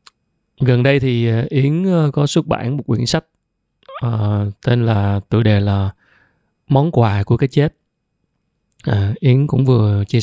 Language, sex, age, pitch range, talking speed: Vietnamese, male, 20-39, 110-140 Hz, 155 wpm